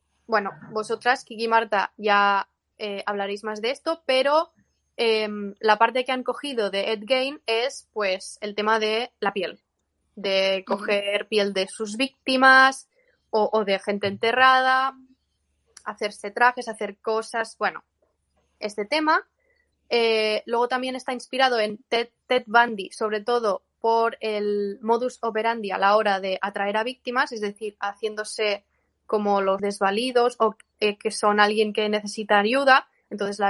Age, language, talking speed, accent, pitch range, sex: 20-39, Spanish, 150 wpm, Spanish, 205-245 Hz, female